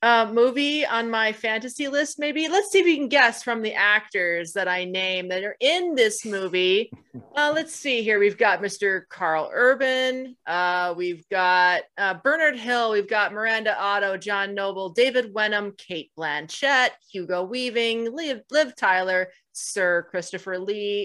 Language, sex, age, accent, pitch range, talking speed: English, female, 30-49, American, 195-250 Hz, 165 wpm